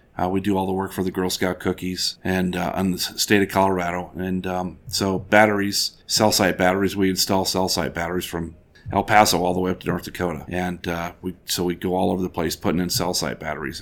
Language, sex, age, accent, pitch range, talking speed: English, male, 40-59, American, 90-100 Hz, 240 wpm